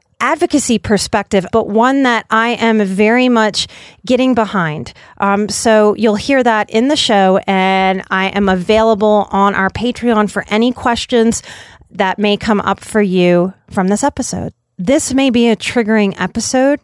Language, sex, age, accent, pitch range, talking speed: English, female, 30-49, American, 190-230 Hz, 155 wpm